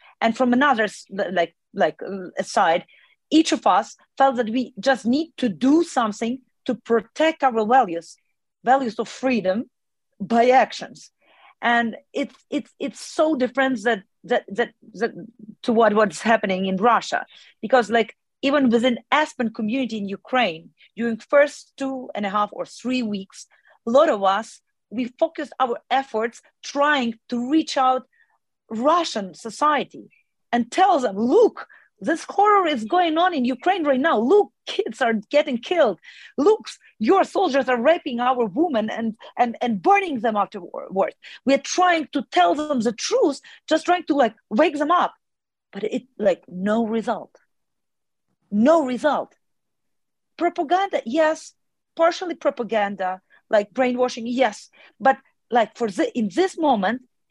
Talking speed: 145 wpm